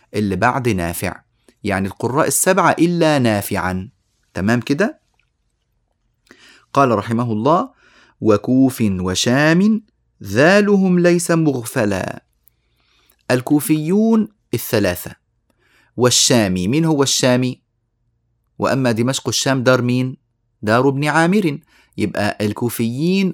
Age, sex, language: 30-49, male, Arabic